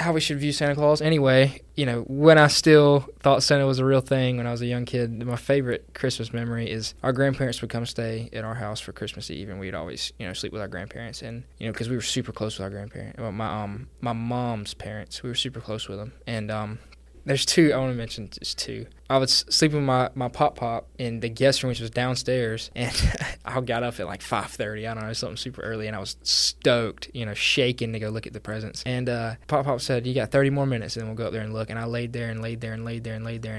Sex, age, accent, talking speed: male, 10-29, American, 270 wpm